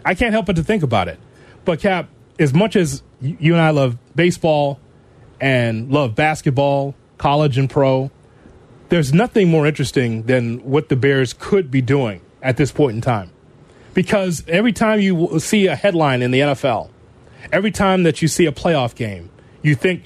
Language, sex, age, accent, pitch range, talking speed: English, male, 30-49, American, 130-175 Hz, 180 wpm